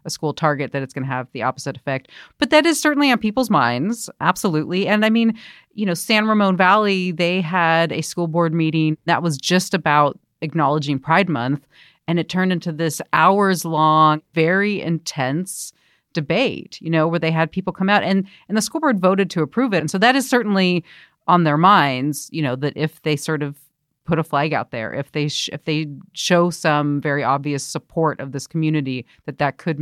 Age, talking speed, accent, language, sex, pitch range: 40-59, 205 wpm, American, English, female, 145-185 Hz